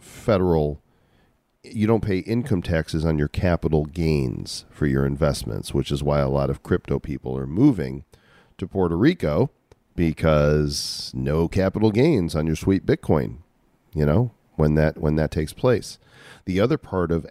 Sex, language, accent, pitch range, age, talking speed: male, English, American, 75-90 Hz, 40-59, 160 wpm